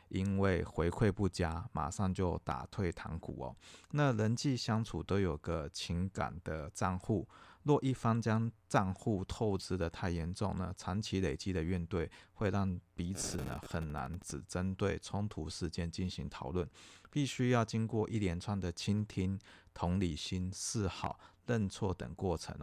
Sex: male